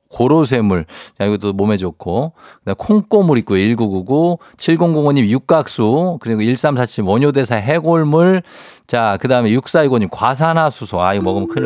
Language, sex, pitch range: Korean, male, 100-130 Hz